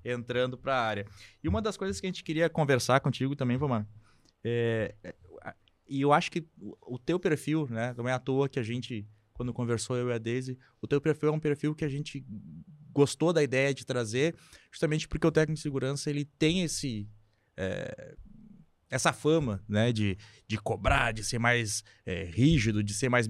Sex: male